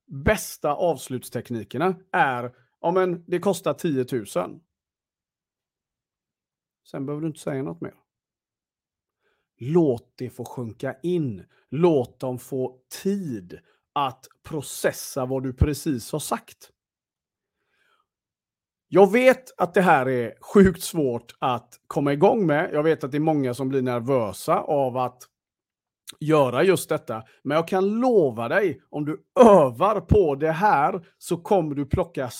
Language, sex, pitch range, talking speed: Swedish, male, 130-190 Hz, 135 wpm